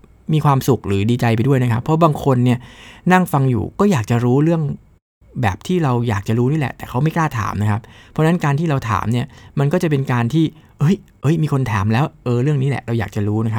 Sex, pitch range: male, 105-135 Hz